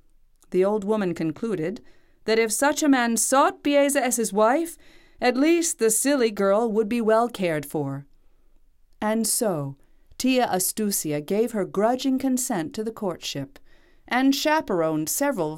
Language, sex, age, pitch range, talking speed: English, female, 40-59, 160-230 Hz, 145 wpm